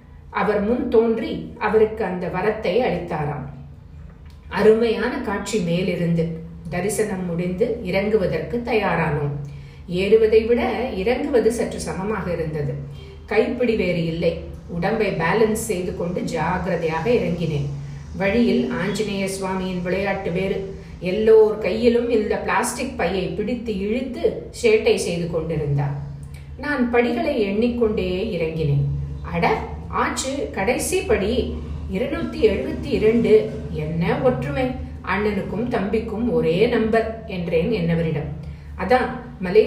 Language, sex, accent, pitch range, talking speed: Tamil, female, native, 170-235 Hz, 85 wpm